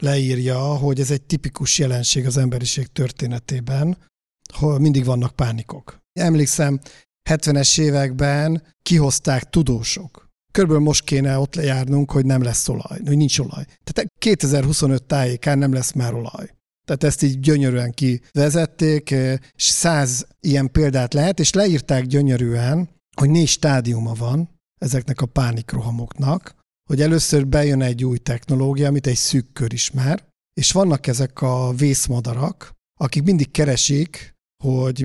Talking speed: 130 wpm